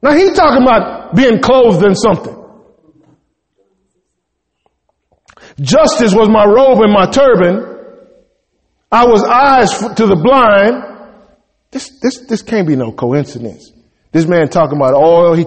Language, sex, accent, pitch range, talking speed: English, male, American, 175-245 Hz, 130 wpm